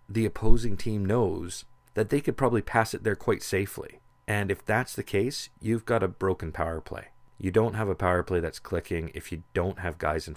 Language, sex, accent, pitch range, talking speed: English, male, American, 85-100 Hz, 220 wpm